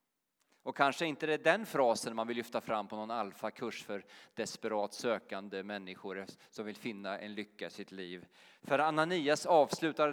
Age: 30-49